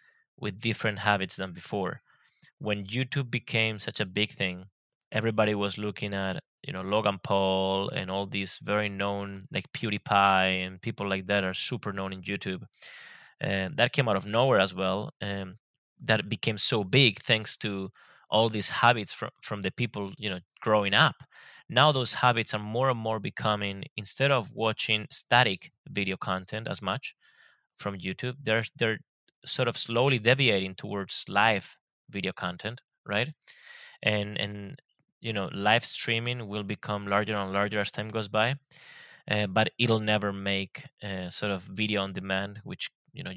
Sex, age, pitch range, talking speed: male, 20-39, 95-110 Hz, 165 wpm